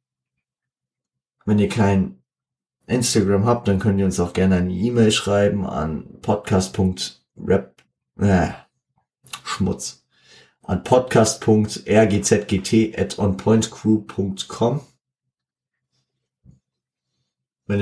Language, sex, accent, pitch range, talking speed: German, male, German, 95-110 Hz, 70 wpm